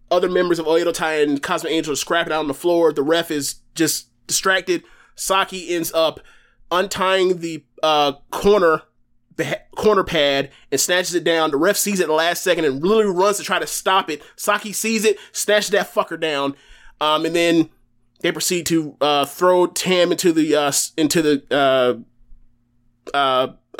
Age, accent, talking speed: 20-39, American, 180 wpm